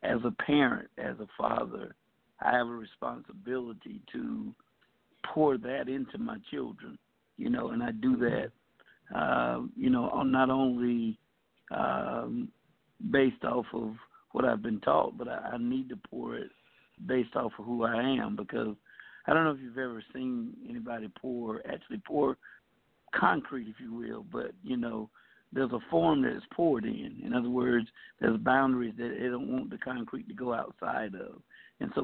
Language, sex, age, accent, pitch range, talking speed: English, male, 60-79, American, 115-135 Hz, 170 wpm